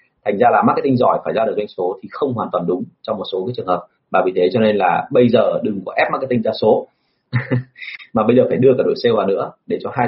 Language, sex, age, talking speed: Vietnamese, male, 30-49, 290 wpm